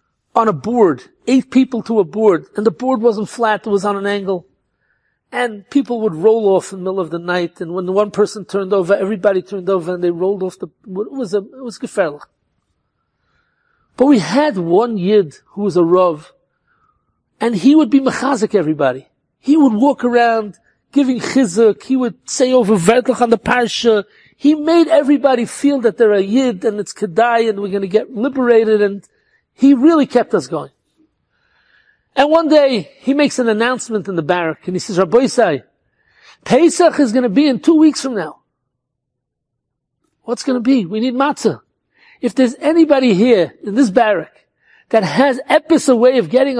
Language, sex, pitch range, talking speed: English, male, 190-260 Hz, 190 wpm